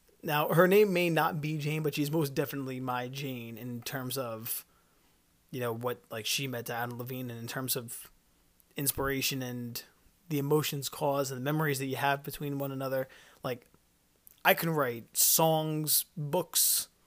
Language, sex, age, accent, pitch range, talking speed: English, male, 20-39, American, 125-155 Hz, 170 wpm